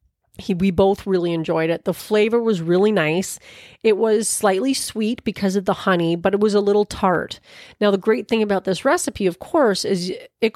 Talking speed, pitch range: 205 wpm, 170-215 Hz